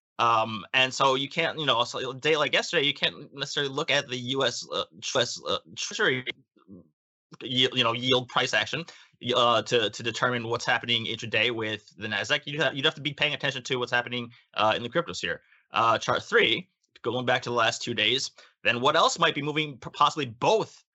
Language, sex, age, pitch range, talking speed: English, male, 20-39, 115-140 Hz, 200 wpm